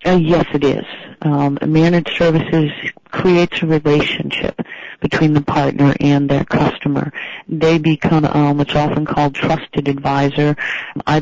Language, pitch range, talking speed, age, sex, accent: English, 140-160 Hz, 135 wpm, 50-69, female, American